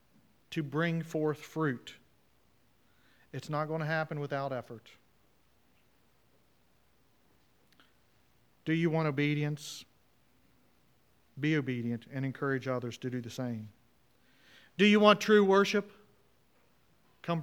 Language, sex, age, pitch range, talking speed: English, male, 40-59, 120-165 Hz, 105 wpm